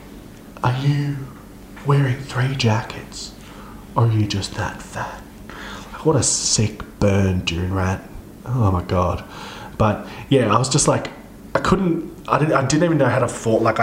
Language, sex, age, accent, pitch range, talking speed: English, male, 20-39, Australian, 95-115 Hz, 170 wpm